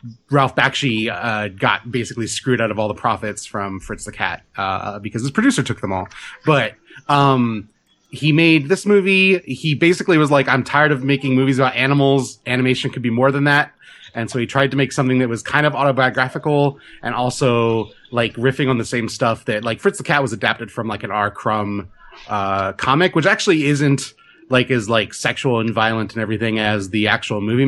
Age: 30-49